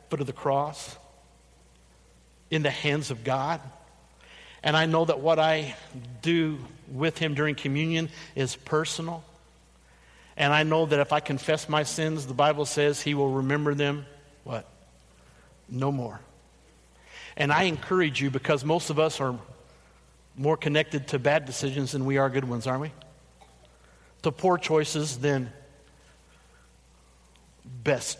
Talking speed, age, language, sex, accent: 145 wpm, 50-69, English, male, American